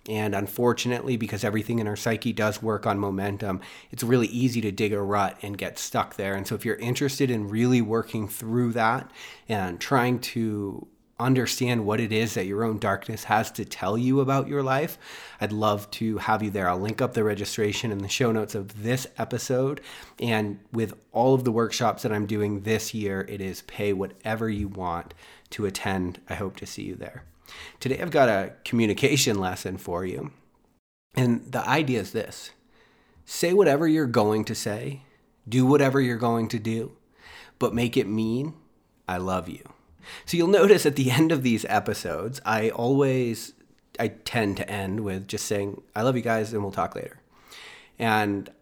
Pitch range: 100-120 Hz